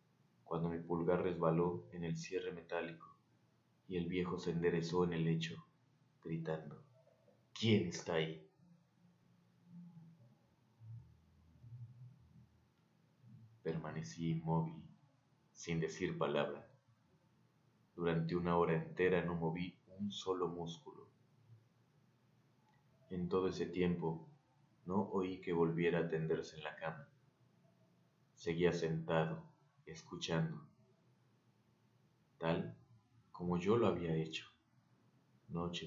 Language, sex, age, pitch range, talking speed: Spanish, male, 30-49, 85-120 Hz, 95 wpm